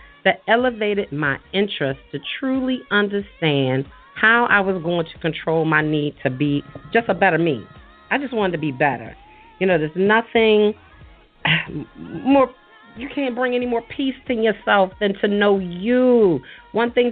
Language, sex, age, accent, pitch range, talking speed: English, female, 40-59, American, 160-230 Hz, 160 wpm